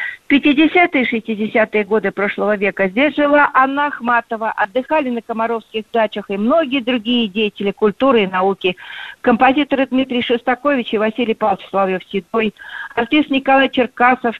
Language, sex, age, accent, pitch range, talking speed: Russian, female, 50-69, native, 210-260 Hz, 135 wpm